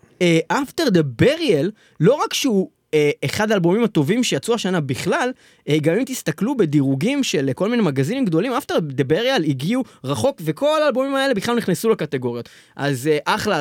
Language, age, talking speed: Hebrew, 20-39, 165 wpm